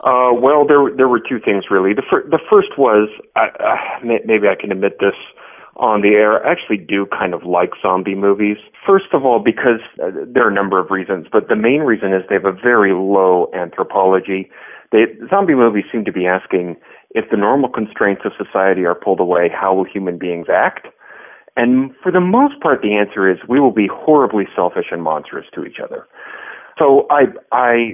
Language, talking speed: English, 205 wpm